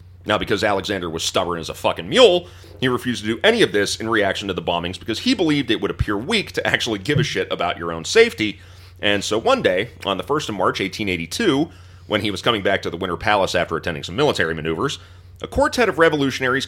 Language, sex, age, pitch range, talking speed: English, male, 30-49, 90-110 Hz, 235 wpm